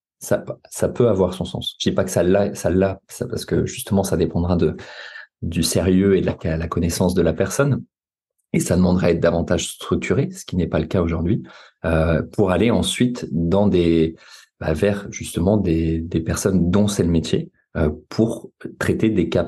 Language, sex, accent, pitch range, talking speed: French, male, French, 80-95 Hz, 205 wpm